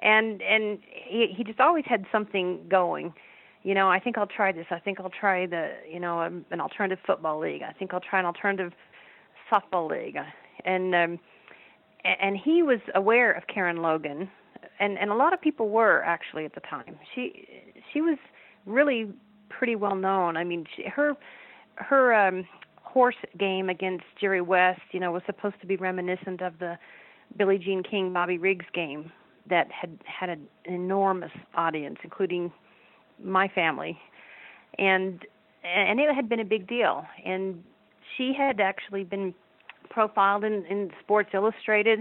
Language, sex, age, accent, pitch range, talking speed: English, female, 40-59, American, 180-215 Hz, 165 wpm